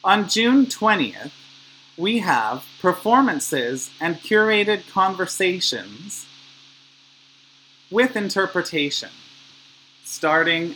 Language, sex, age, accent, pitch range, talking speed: English, male, 30-49, American, 140-195 Hz, 65 wpm